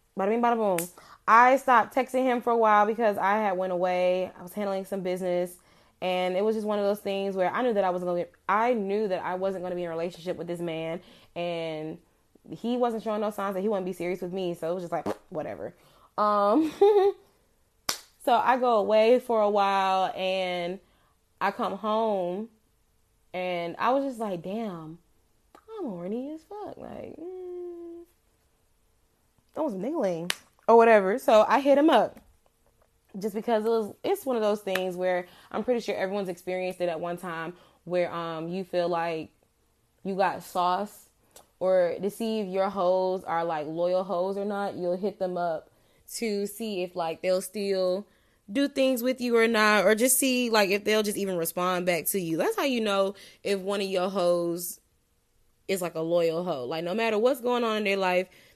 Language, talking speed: English, 195 wpm